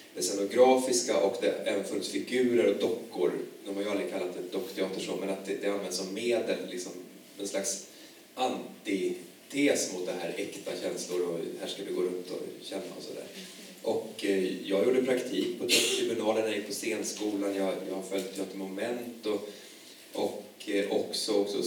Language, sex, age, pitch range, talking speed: Swedish, male, 30-49, 95-130 Hz, 170 wpm